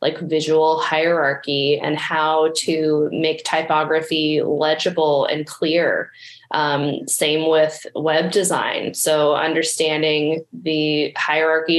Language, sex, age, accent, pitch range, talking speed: English, female, 20-39, American, 155-175 Hz, 100 wpm